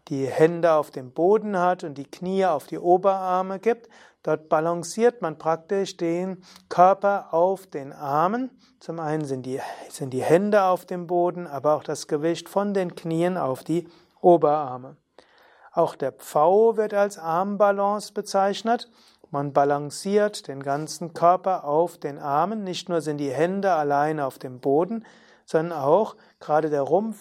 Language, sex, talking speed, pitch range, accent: German, male, 155 wpm, 155-195 Hz, German